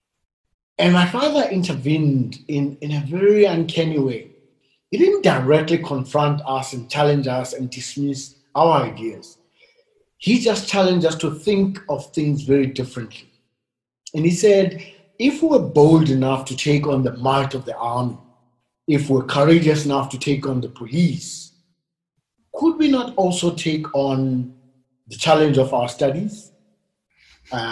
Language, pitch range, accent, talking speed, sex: English, 130-175 Hz, South African, 145 wpm, male